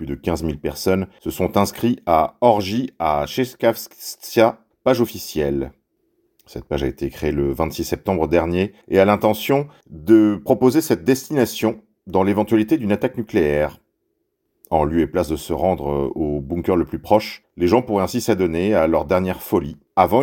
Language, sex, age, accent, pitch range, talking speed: French, male, 40-59, French, 95-125 Hz, 170 wpm